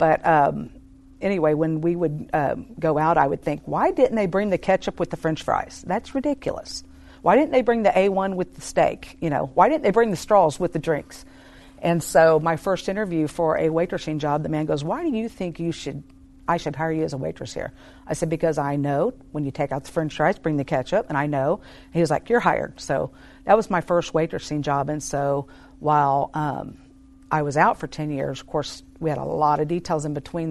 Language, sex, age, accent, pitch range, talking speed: English, female, 50-69, American, 145-175 Hz, 235 wpm